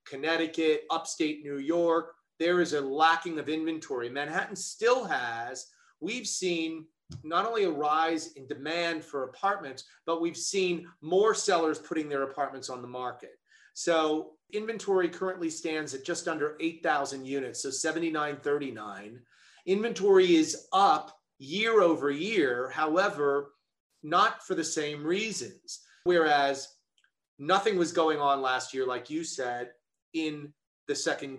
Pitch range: 145-180 Hz